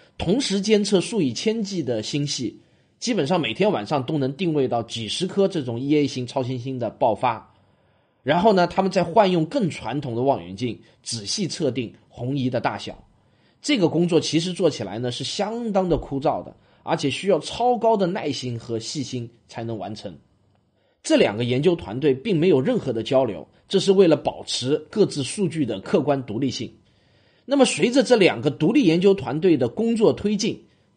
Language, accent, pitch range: Chinese, native, 130-210 Hz